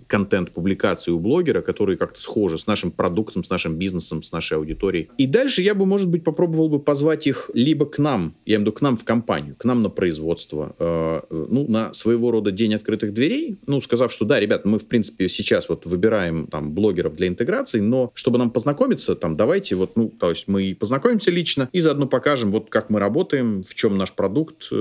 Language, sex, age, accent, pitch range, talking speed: Russian, male, 30-49, native, 100-145 Hz, 215 wpm